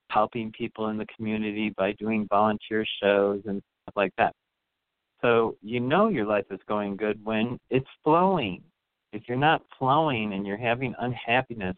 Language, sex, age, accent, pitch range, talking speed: English, male, 50-69, American, 105-145 Hz, 165 wpm